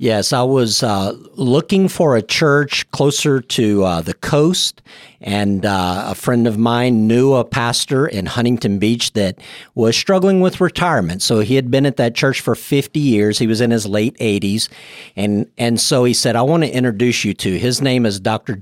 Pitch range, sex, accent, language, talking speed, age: 110-145 Hz, male, American, English, 195 wpm, 50-69